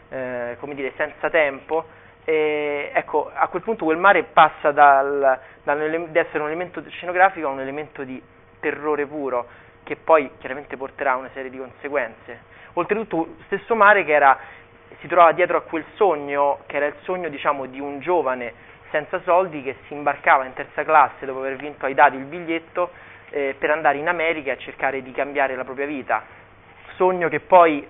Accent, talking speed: native, 180 wpm